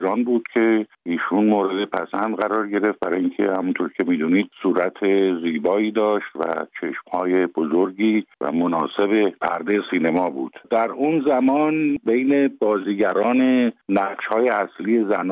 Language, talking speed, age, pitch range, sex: Persian, 120 wpm, 50-69, 100-120 Hz, male